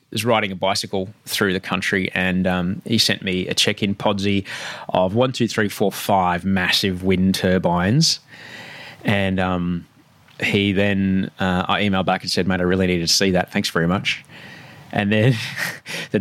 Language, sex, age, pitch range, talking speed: English, male, 20-39, 95-115 Hz, 175 wpm